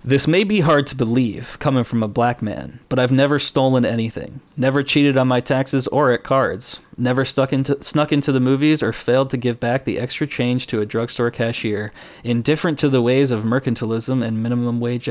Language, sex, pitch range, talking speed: English, male, 115-135 Hz, 205 wpm